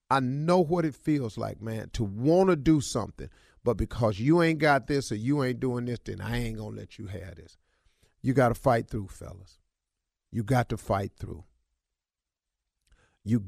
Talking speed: 185 wpm